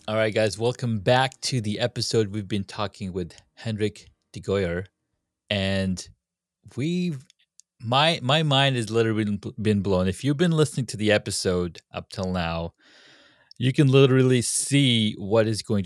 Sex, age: male, 30-49